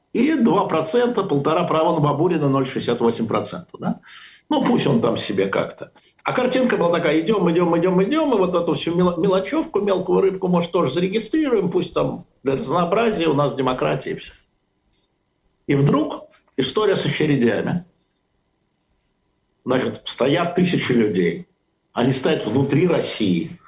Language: Russian